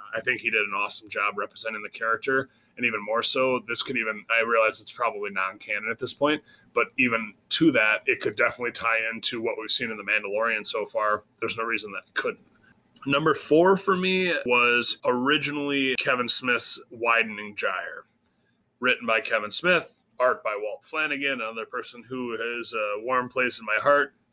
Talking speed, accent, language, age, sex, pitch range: 185 wpm, American, English, 20-39, male, 115-155 Hz